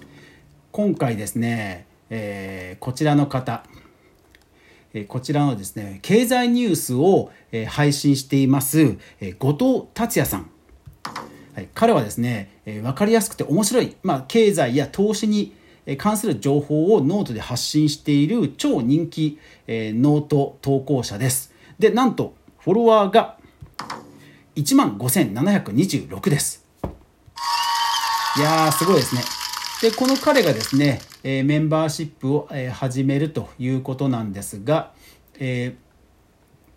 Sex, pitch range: male, 115-170 Hz